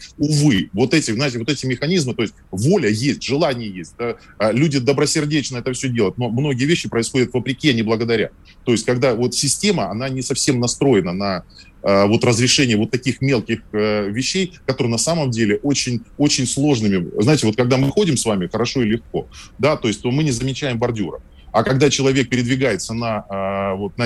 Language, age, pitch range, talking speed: Russian, 20-39, 105-135 Hz, 185 wpm